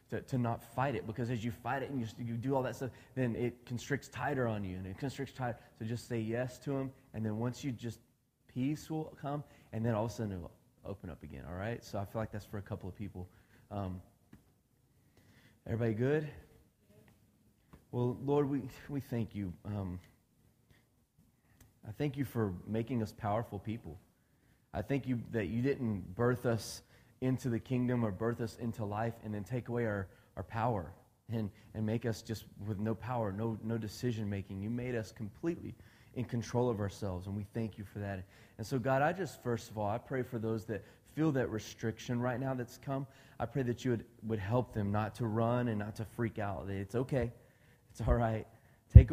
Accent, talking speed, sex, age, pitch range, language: American, 210 wpm, male, 30-49, 105-125 Hz, English